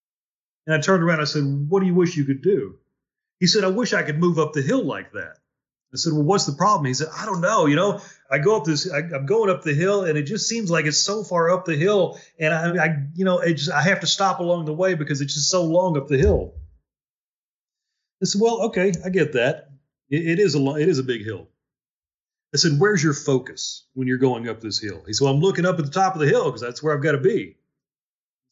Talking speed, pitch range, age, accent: 265 wpm, 140-185 Hz, 30-49, American